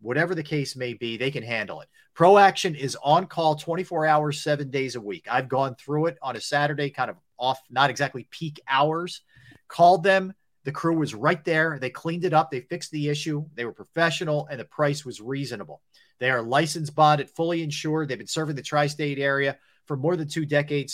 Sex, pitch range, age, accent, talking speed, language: male, 130-165 Hz, 40-59, American, 210 wpm, English